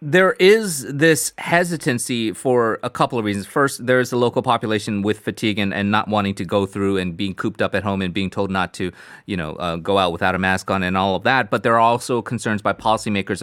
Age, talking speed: 30-49, 240 wpm